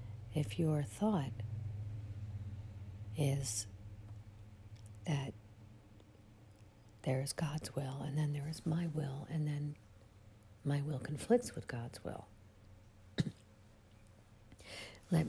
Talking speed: 95 wpm